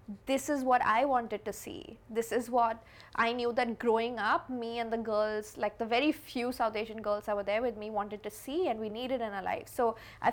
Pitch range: 220-265 Hz